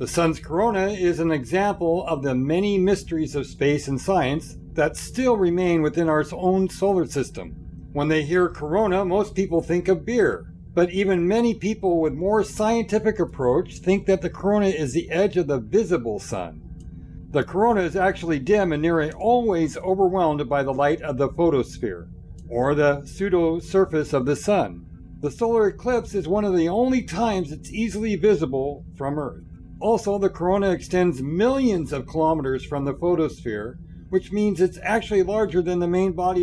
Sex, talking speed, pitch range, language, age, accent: male, 170 wpm, 145-195 Hz, English, 60-79, American